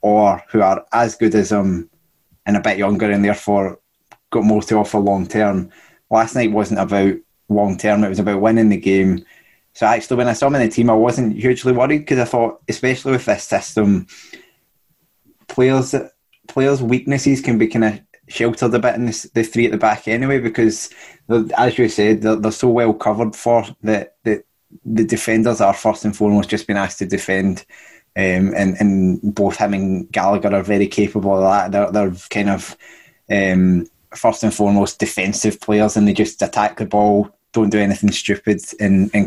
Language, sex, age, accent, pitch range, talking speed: English, male, 20-39, British, 100-115 Hz, 190 wpm